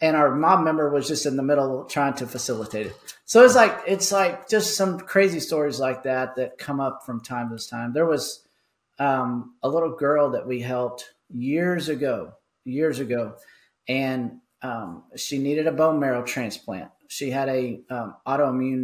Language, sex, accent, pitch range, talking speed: English, male, American, 125-150 Hz, 180 wpm